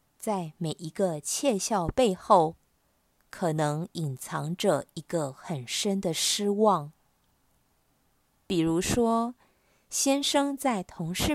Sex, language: female, Chinese